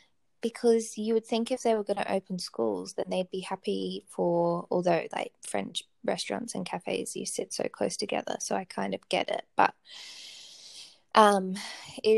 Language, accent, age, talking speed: English, Australian, 20-39, 175 wpm